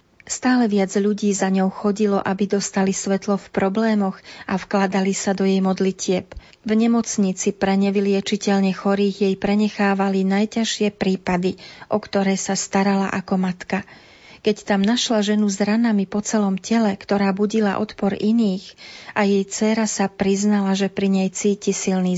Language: Slovak